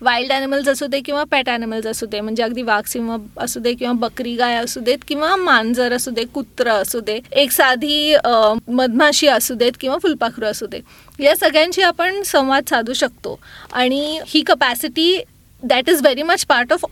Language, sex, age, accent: Marathi, female, 30-49, native